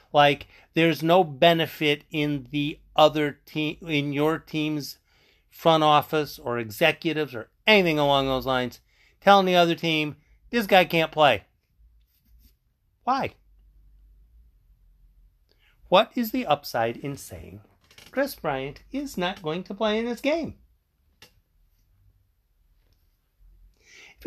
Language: English